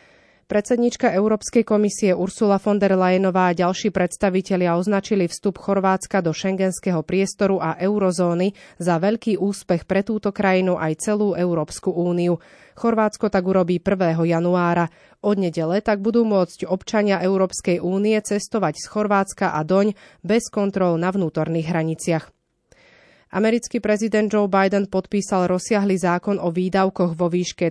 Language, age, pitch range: Slovak, 30-49, 180-205 Hz